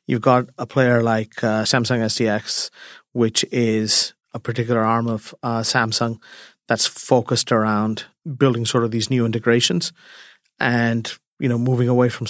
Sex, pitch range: male, 115-130 Hz